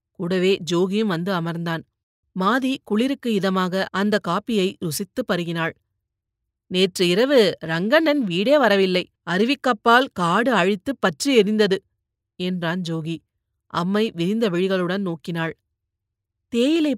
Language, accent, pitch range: Tamil, native, 170-225 Hz